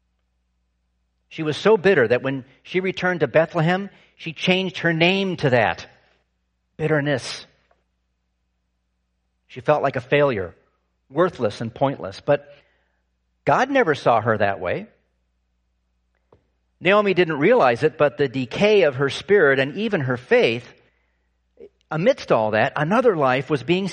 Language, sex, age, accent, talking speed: English, male, 50-69, American, 135 wpm